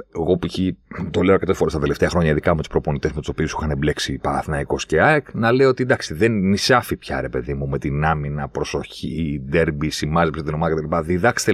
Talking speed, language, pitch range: 225 wpm, Greek, 80-130 Hz